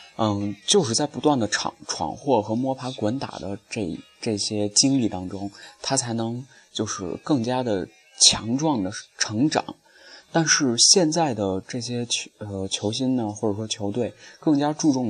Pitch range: 100-130 Hz